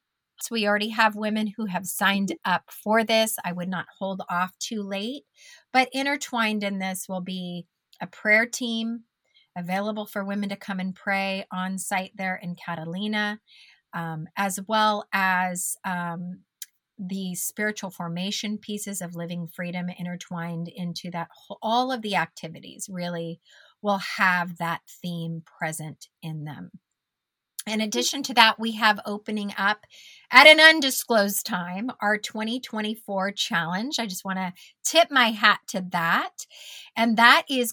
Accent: American